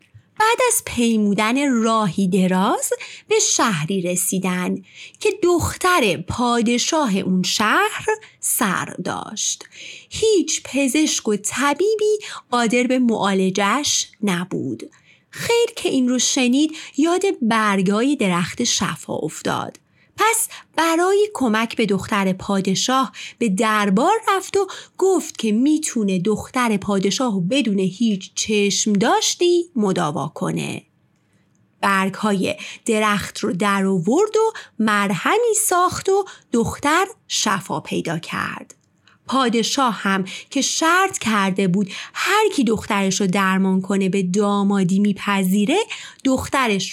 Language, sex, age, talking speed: Persian, female, 30-49, 100 wpm